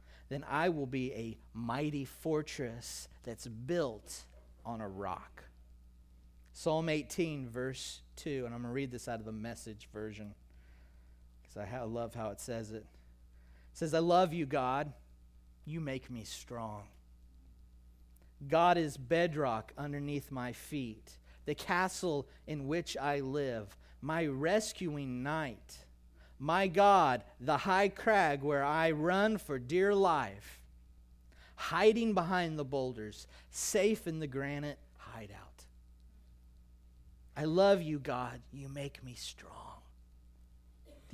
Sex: male